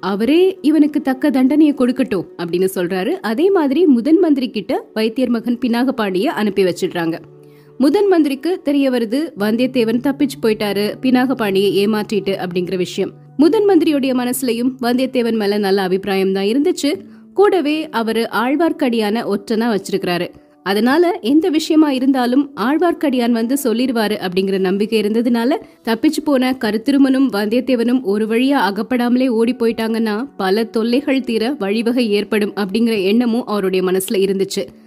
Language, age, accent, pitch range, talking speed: Tamil, 20-39, native, 200-280 Hz, 85 wpm